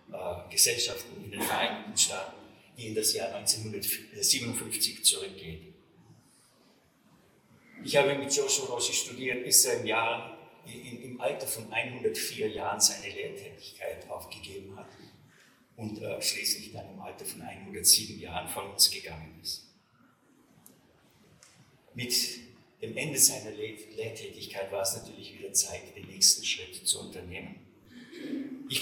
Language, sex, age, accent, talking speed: English, male, 50-69, German, 120 wpm